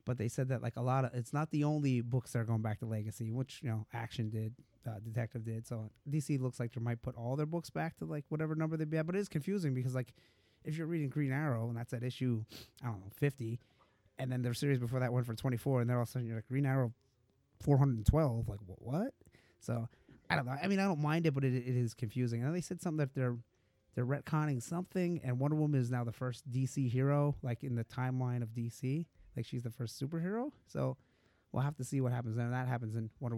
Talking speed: 265 wpm